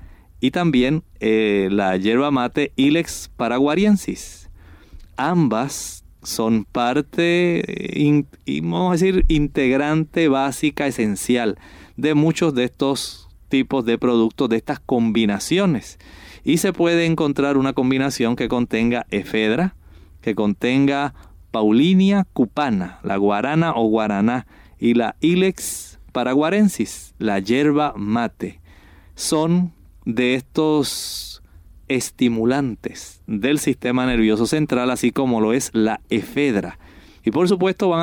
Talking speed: 110 wpm